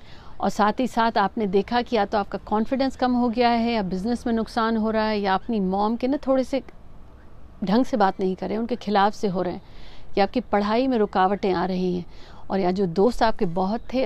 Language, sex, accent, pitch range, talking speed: Hindi, female, native, 195-235 Hz, 240 wpm